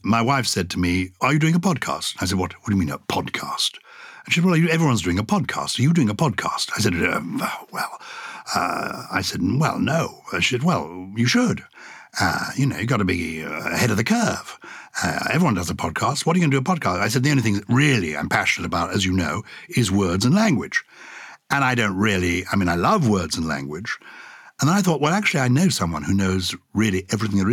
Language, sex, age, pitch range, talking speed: English, male, 60-79, 90-125 Hz, 245 wpm